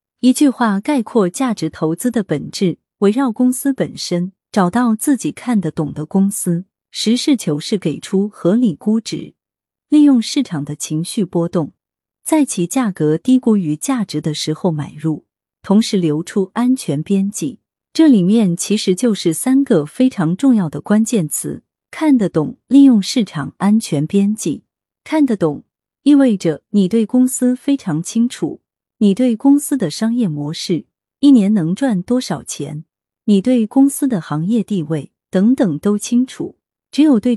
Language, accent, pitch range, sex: Chinese, native, 170-250 Hz, female